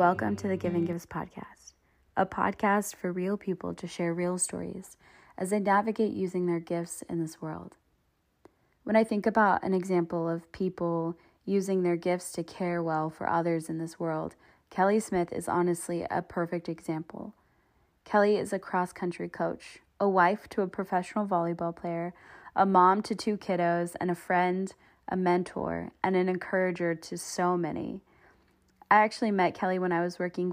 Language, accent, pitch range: English, American, 170-195 Hz